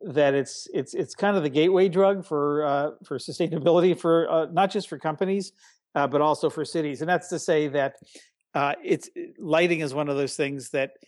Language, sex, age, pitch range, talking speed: English, male, 50-69, 140-175 Hz, 205 wpm